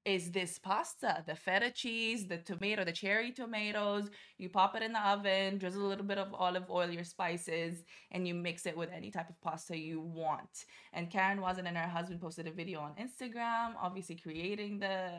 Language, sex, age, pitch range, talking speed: Arabic, female, 20-39, 175-210 Hz, 200 wpm